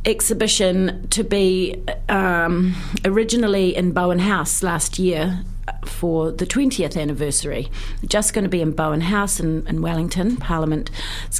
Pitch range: 160-205 Hz